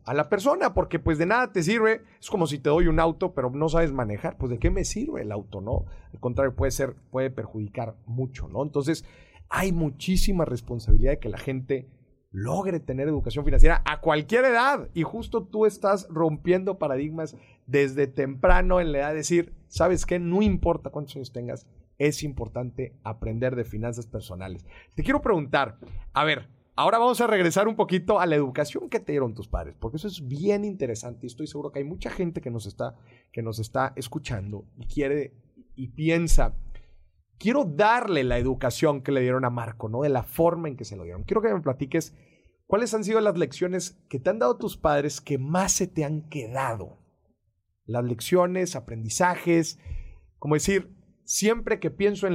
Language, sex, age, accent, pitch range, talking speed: Spanish, male, 40-59, Mexican, 120-180 Hz, 190 wpm